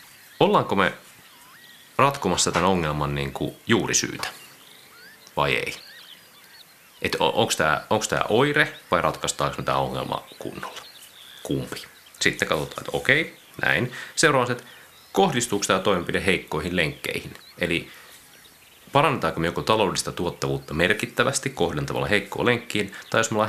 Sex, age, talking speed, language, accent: male, 30-49, 120 wpm, Finnish, native